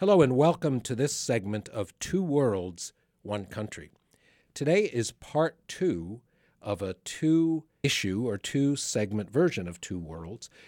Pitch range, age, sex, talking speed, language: 100-130 Hz, 50-69, male, 135 wpm, English